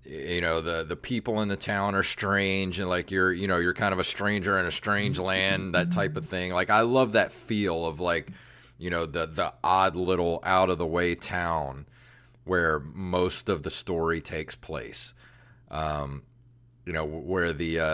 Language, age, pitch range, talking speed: English, 30-49, 85-115 Hz, 195 wpm